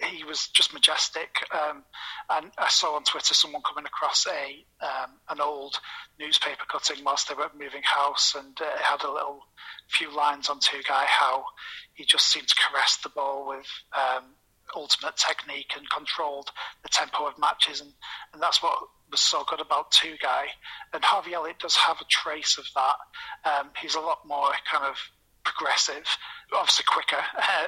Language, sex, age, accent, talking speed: English, male, 30-49, British, 180 wpm